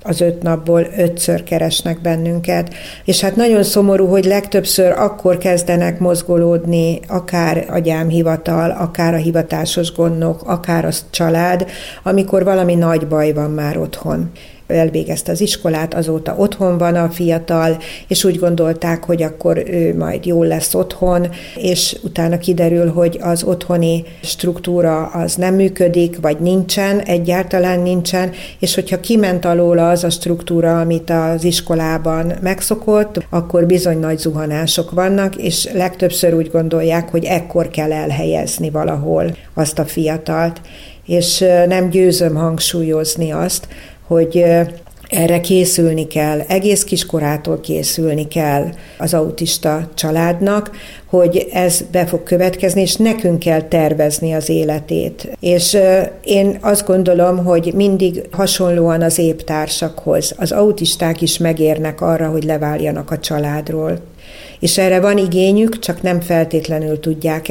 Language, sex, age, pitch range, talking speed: Hungarian, female, 60-79, 165-180 Hz, 130 wpm